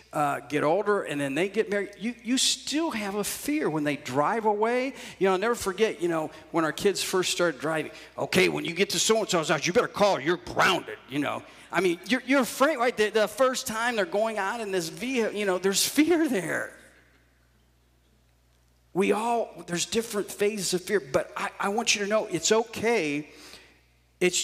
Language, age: English, 40-59